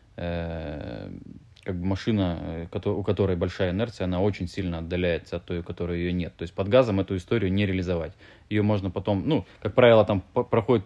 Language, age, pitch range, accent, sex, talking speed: Russian, 20-39, 90-110 Hz, native, male, 180 wpm